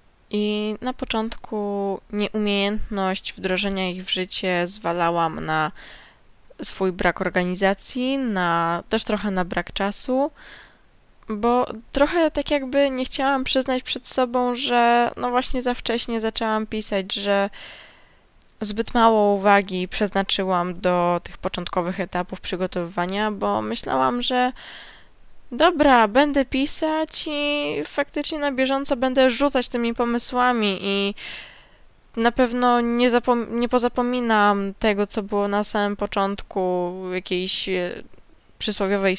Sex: female